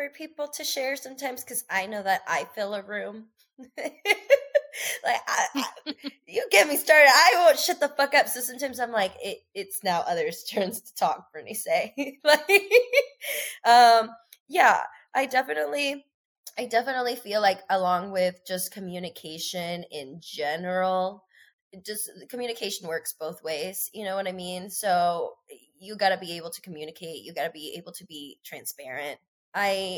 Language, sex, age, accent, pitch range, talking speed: English, female, 20-39, American, 180-250 Hz, 165 wpm